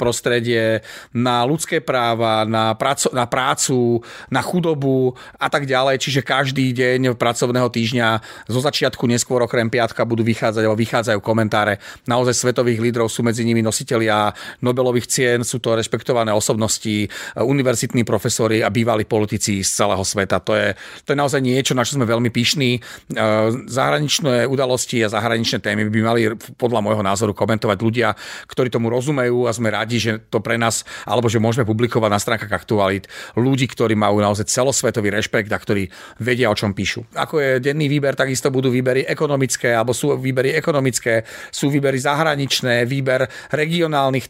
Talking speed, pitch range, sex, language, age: 160 wpm, 110-130 Hz, male, Slovak, 40-59